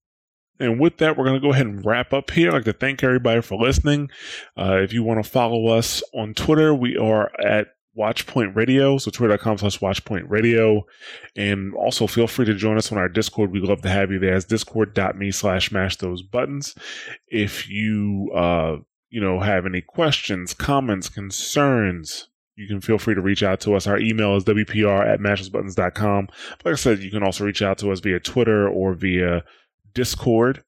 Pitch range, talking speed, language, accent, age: 95-120 Hz, 190 wpm, English, American, 20-39